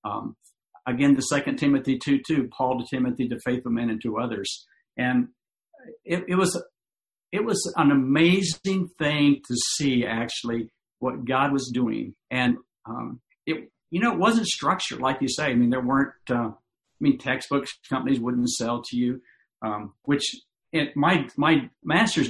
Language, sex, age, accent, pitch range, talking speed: English, male, 50-69, American, 125-155 Hz, 165 wpm